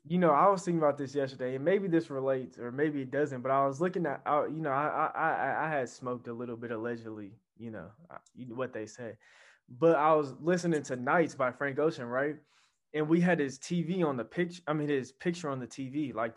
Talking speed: 230 wpm